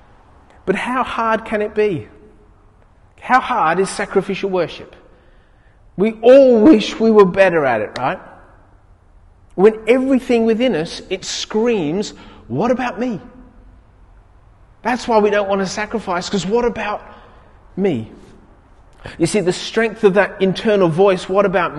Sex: male